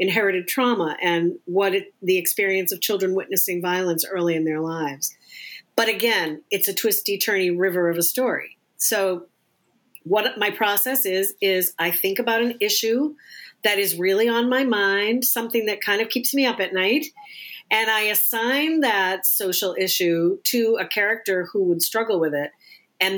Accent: American